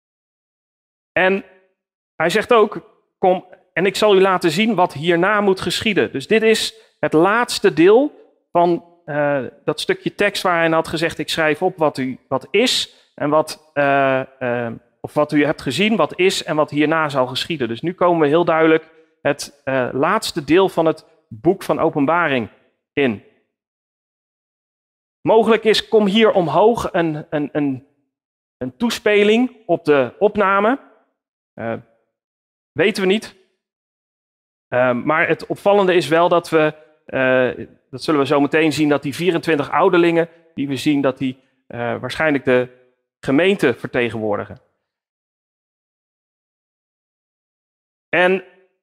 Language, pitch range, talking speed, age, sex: Dutch, 145-190 Hz, 145 wpm, 40-59, male